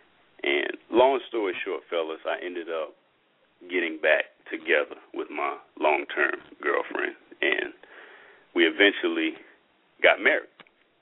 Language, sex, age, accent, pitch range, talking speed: English, male, 40-59, American, 350-440 Hz, 110 wpm